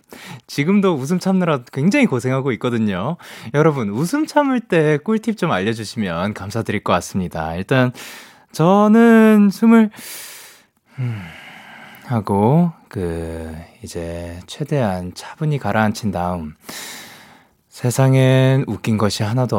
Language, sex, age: Korean, male, 20-39